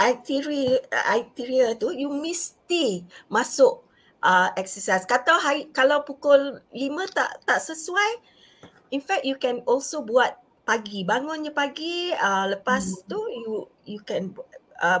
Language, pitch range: Malay, 200-285 Hz